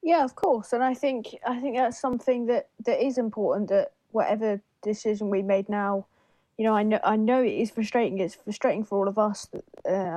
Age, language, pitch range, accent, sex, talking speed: 20-39, English, 195-225 Hz, British, female, 210 wpm